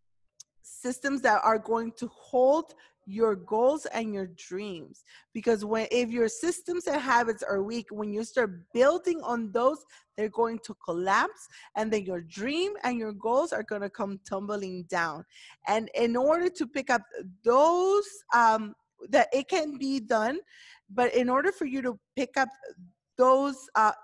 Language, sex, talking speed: English, female, 165 wpm